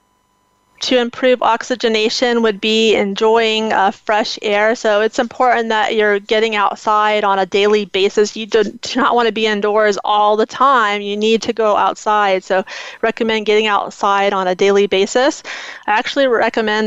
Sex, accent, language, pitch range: female, American, English, 205-235 Hz